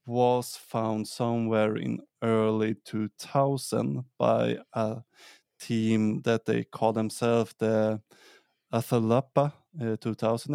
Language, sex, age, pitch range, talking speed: English, male, 20-39, 110-125 Hz, 95 wpm